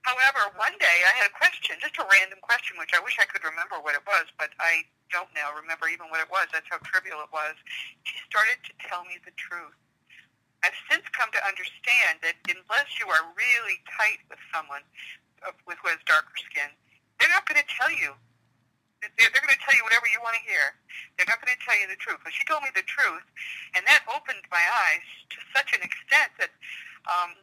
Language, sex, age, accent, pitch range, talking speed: English, female, 50-69, American, 165-230 Hz, 215 wpm